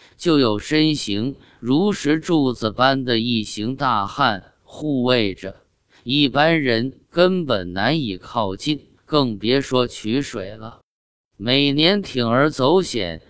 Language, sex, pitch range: Chinese, male, 105-145 Hz